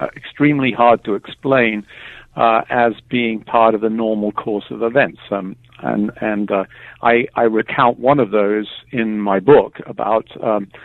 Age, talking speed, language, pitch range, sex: 50-69, 160 wpm, English, 110-130 Hz, male